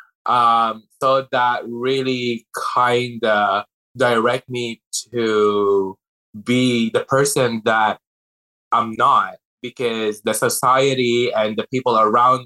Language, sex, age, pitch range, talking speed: English, male, 20-39, 105-130 Hz, 105 wpm